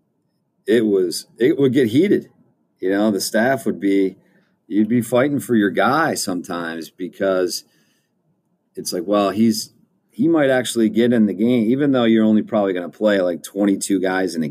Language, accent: English, American